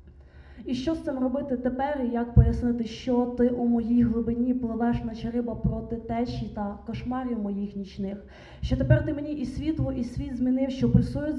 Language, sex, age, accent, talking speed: Ukrainian, female, 20-39, native, 180 wpm